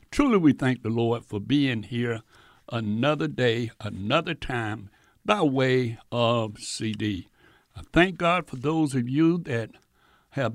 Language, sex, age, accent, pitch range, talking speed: English, male, 60-79, American, 115-145 Hz, 140 wpm